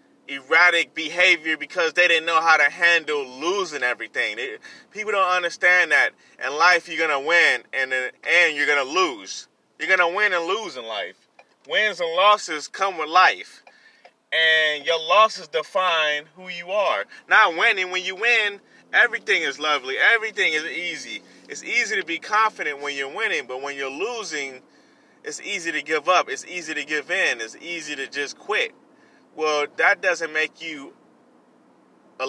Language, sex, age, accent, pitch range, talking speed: English, male, 20-39, American, 155-215 Hz, 170 wpm